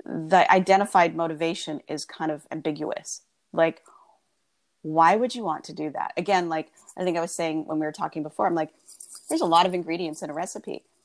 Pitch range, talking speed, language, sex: 160-215 Hz, 200 wpm, English, female